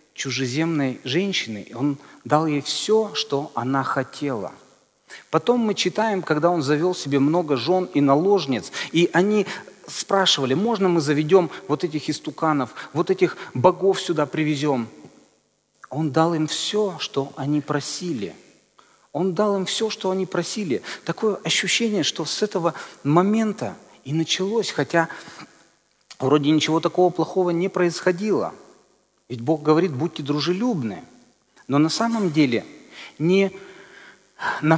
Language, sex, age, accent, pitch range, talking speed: Russian, male, 40-59, native, 140-190 Hz, 130 wpm